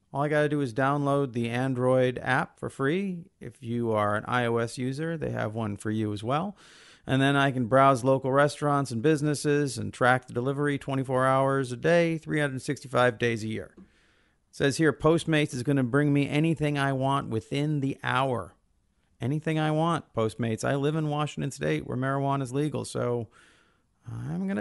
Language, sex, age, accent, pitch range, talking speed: English, male, 40-59, American, 120-150 Hz, 190 wpm